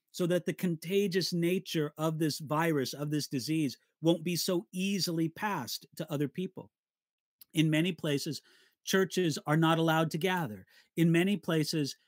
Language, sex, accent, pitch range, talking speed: English, male, American, 155-190 Hz, 155 wpm